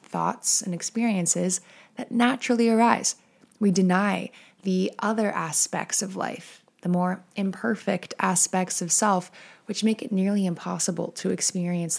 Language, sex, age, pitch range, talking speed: English, female, 20-39, 170-200 Hz, 130 wpm